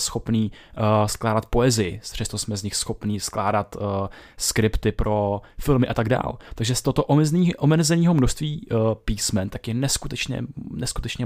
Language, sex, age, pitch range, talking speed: Czech, male, 20-39, 110-130 Hz, 150 wpm